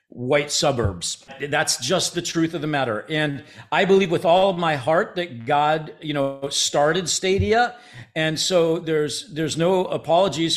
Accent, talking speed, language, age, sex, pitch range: American, 165 wpm, English, 50-69, male, 145-180 Hz